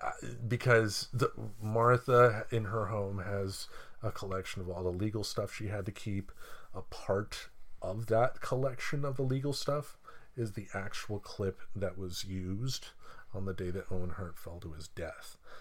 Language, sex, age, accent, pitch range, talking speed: English, male, 40-59, American, 95-115 Hz, 165 wpm